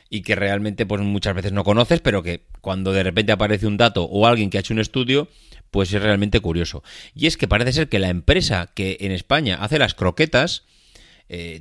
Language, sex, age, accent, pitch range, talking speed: Spanish, male, 30-49, Spanish, 95-130 Hz, 215 wpm